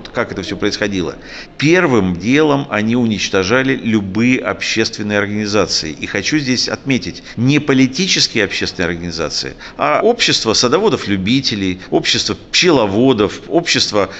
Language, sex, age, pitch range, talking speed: Russian, male, 50-69, 110-150 Hz, 105 wpm